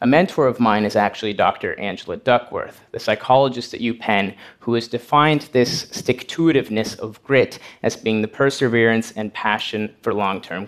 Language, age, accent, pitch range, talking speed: Russian, 30-49, American, 115-135 Hz, 155 wpm